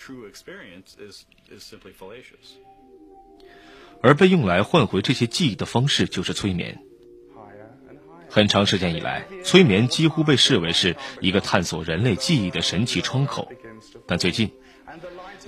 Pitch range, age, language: 95-150 Hz, 30-49, Chinese